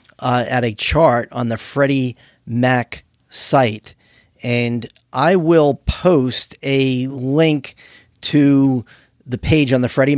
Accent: American